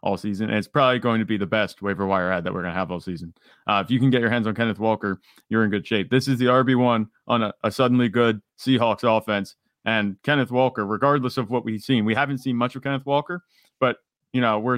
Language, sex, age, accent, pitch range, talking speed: English, male, 30-49, American, 110-135 Hz, 260 wpm